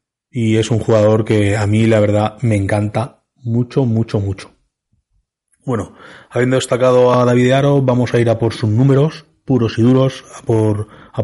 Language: Spanish